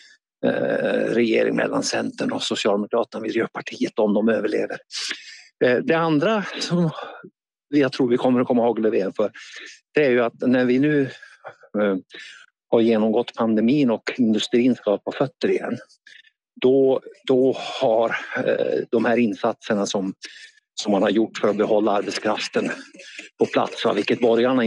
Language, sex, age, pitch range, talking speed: Swedish, male, 60-79, 120-170 Hz, 135 wpm